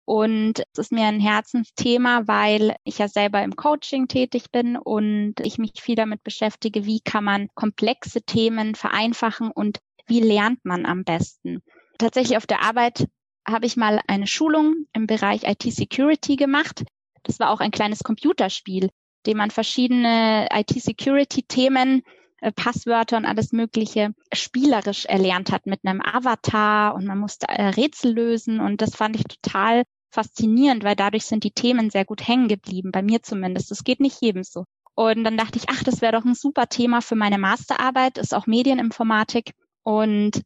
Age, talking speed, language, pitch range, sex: 20-39, 165 wpm, German, 210-250 Hz, female